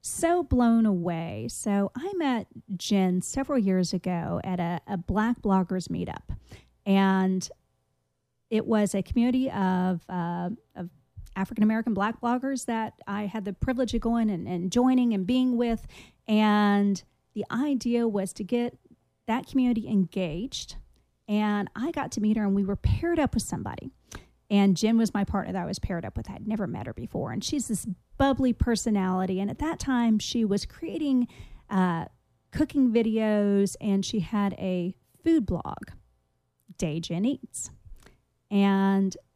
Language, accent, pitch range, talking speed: English, American, 190-240 Hz, 155 wpm